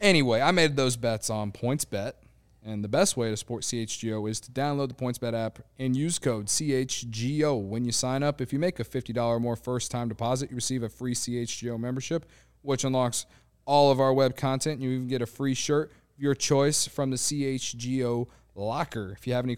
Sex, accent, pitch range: male, American, 115-140 Hz